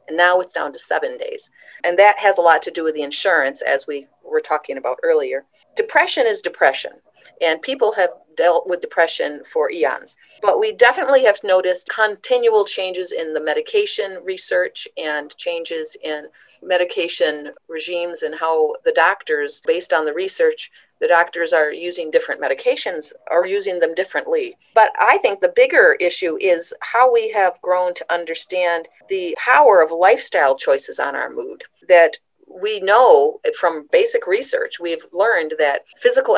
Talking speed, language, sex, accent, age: 160 wpm, English, female, American, 40-59